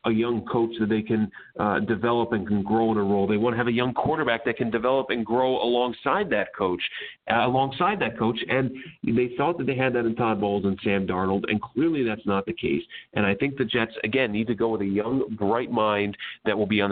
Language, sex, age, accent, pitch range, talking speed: English, male, 40-59, American, 105-125 Hz, 250 wpm